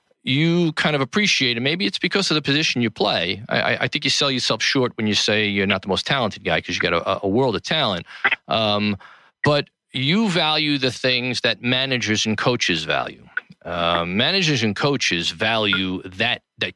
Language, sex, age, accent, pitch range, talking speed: English, male, 40-59, American, 100-130 Hz, 195 wpm